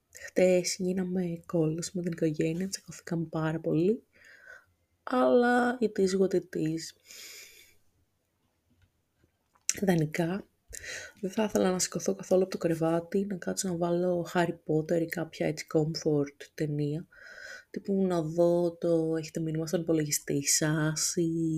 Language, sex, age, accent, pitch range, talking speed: Greek, female, 20-39, native, 160-185 Hz, 115 wpm